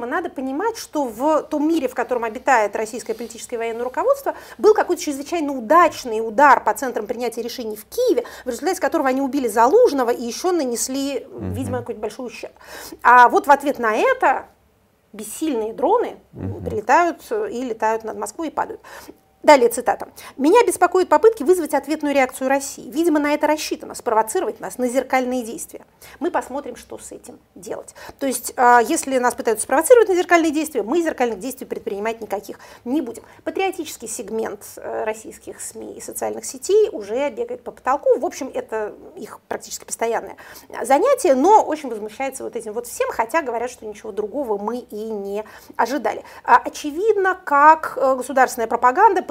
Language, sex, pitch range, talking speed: Russian, female, 235-335 Hz, 160 wpm